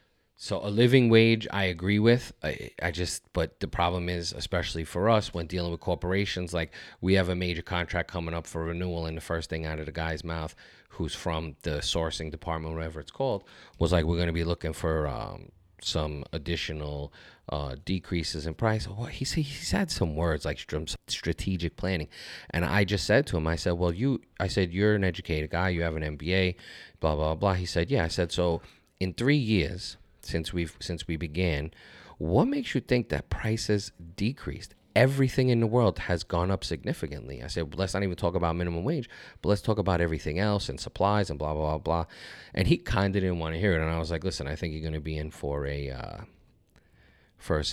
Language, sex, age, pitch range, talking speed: English, male, 30-49, 80-95 Hz, 215 wpm